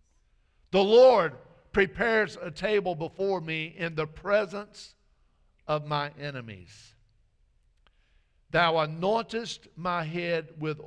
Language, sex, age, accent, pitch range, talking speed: English, male, 50-69, American, 115-175 Hz, 100 wpm